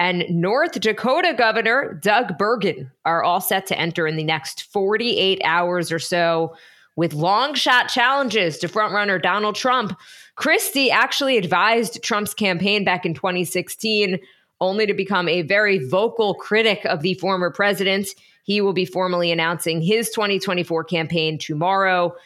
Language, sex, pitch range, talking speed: English, female, 175-215 Hz, 145 wpm